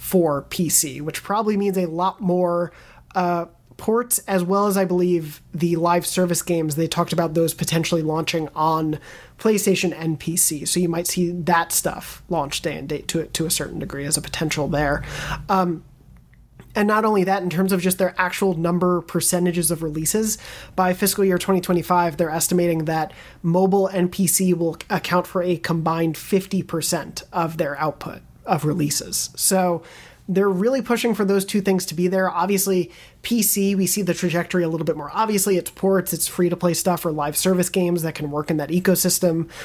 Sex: male